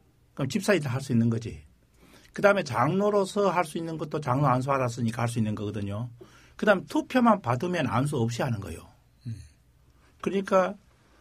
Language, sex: Korean, male